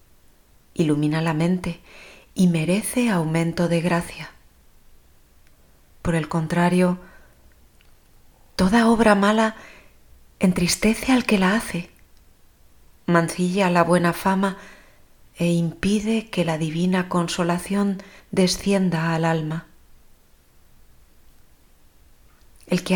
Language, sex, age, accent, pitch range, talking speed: Spanish, female, 30-49, Spanish, 165-205 Hz, 90 wpm